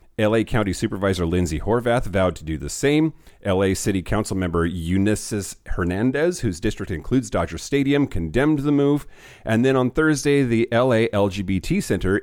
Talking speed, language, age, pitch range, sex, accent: 155 wpm, English, 40-59, 85-115 Hz, male, American